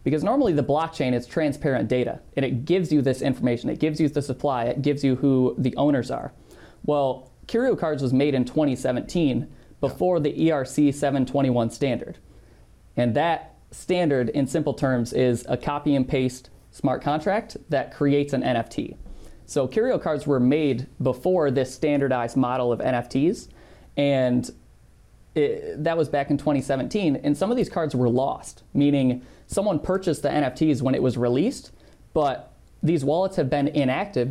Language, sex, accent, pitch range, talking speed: English, male, American, 130-155 Hz, 165 wpm